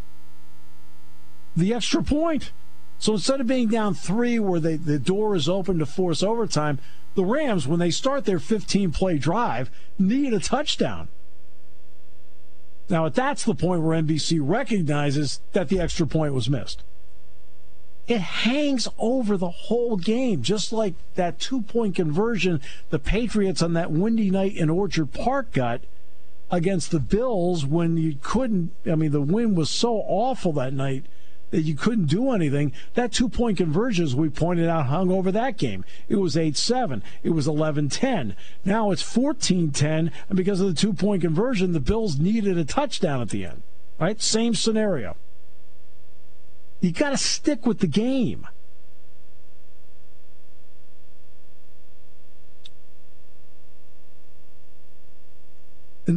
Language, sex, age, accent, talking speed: English, male, 50-69, American, 140 wpm